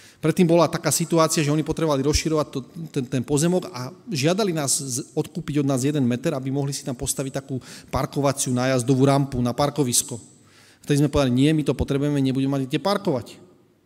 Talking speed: 180 wpm